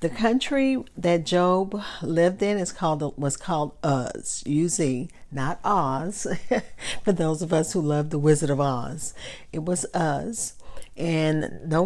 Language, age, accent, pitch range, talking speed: English, 50-69, American, 150-195 Hz, 145 wpm